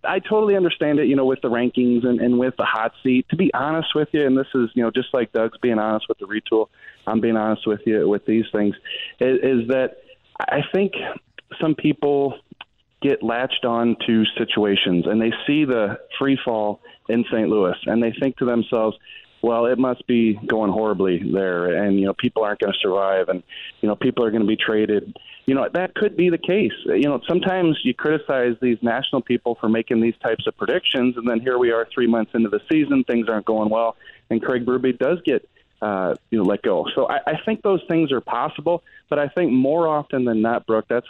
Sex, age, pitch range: male, 30-49, 110-135 Hz